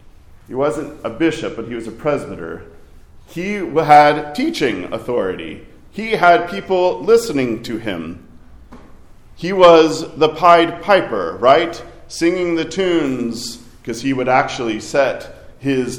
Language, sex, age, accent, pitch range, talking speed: English, male, 40-59, American, 120-170 Hz, 130 wpm